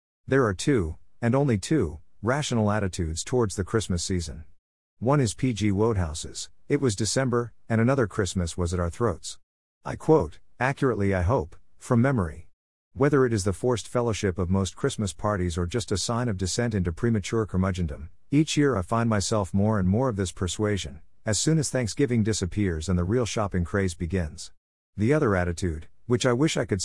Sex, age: male, 50-69